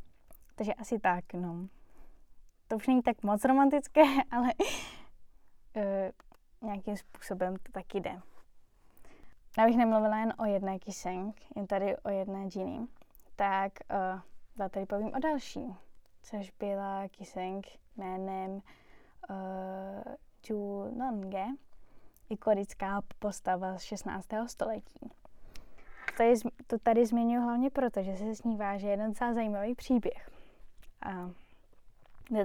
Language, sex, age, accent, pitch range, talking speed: Czech, female, 10-29, native, 195-230 Hz, 120 wpm